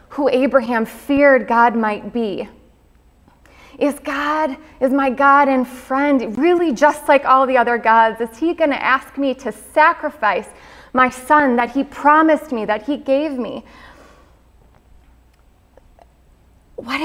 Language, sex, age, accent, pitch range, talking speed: English, female, 20-39, American, 230-280 Hz, 135 wpm